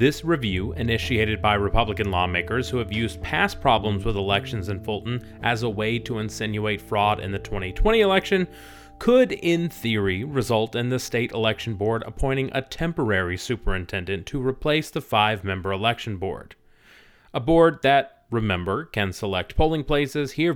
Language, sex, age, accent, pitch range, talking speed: English, male, 30-49, American, 105-150 Hz, 155 wpm